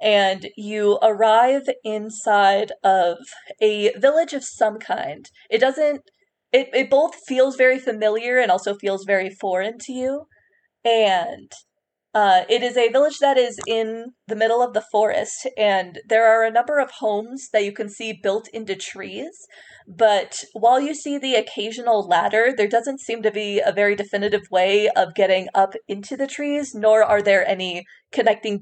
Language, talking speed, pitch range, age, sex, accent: English, 170 wpm, 195-245 Hz, 20-39, female, American